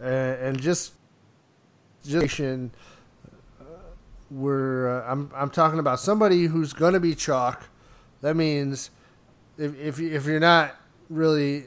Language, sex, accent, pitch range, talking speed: English, male, American, 125-150 Hz, 115 wpm